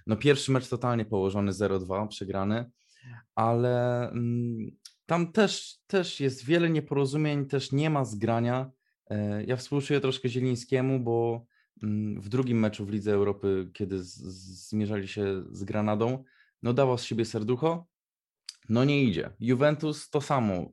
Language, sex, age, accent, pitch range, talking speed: Polish, male, 20-39, native, 105-130 Hz, 135 wpm